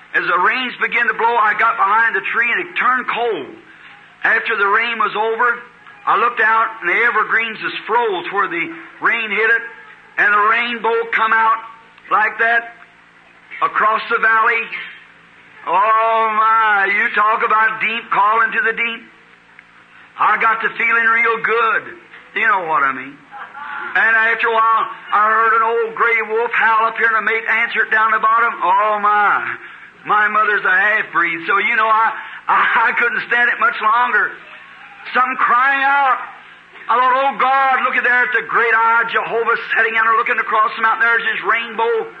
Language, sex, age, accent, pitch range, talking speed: English, male, 50-69, American, 220-235 Hz, 180 wpm